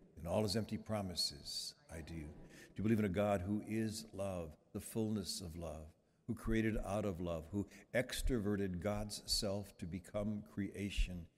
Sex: male